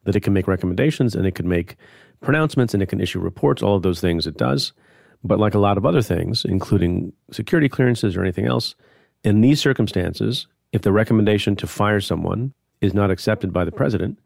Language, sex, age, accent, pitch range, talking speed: English, male, 40-59, American, 90-110 Hz, 205 wpm